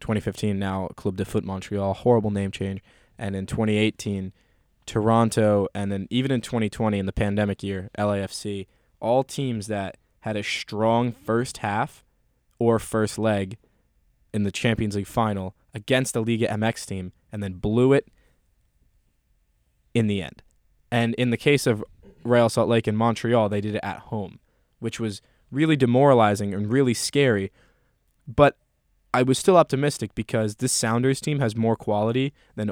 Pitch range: 100-120 Hz